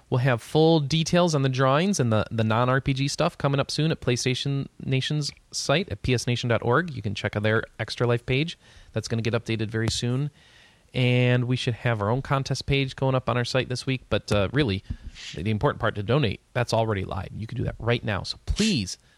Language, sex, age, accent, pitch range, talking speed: English, male, 30-49, American, 115-155 Hz, 220 wpm